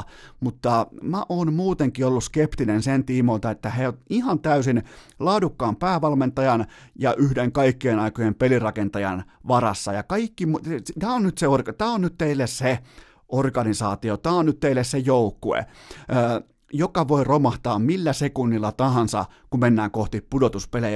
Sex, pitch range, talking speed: male, 110-140 Hz, 140 wpm